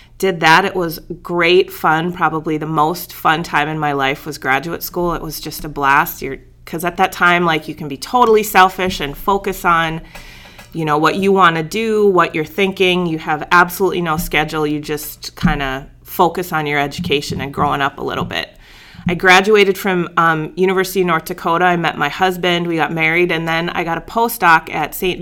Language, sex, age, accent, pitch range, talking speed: English, female, 30-49, American, 155-185 Hz, 200 wpm